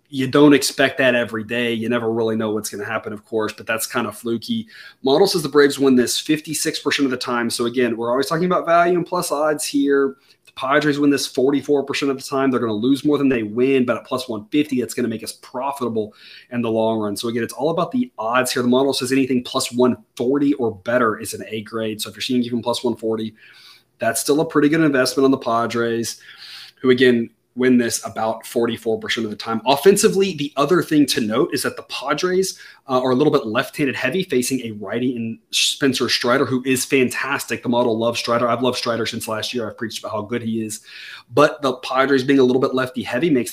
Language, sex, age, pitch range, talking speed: English, male, 20-39, 115-140 Hz, 235 wpm